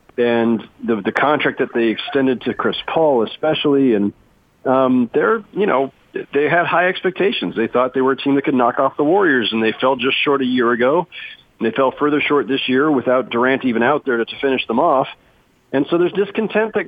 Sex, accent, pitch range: male, American, 120-145 Hz